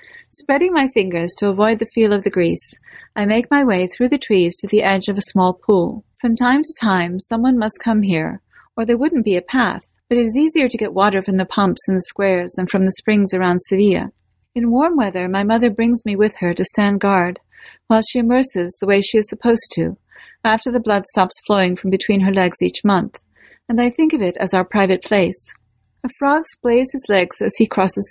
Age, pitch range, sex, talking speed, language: 40-59, 190-235 Hz, female, 225 wpm, English